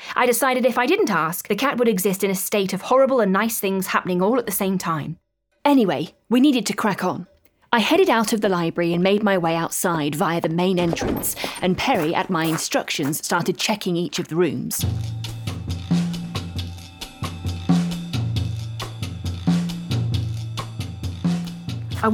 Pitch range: 160-215 Hz